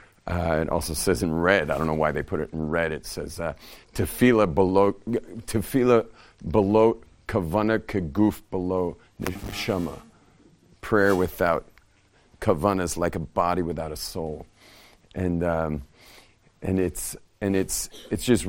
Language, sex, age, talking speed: English, male, 40-59, 145 wpm